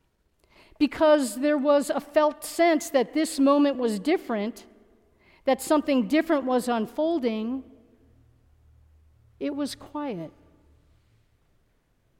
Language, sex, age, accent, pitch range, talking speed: English, female, 50-69, American, 225-300 Hz, 95 wpm